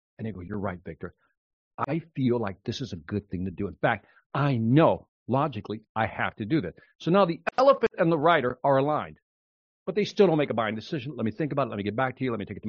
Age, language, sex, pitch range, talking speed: 60-79, English, male, 110-165 Hz, 280 wpm